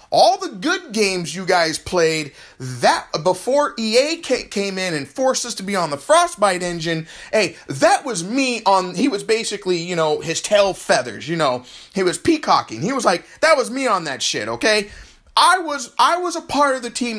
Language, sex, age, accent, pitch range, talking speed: English, male, 30-49, American, 185-270 Hz, 205 wpm